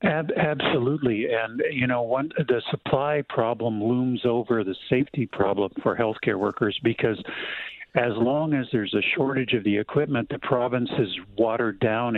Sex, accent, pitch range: male, American, 110-140 Hz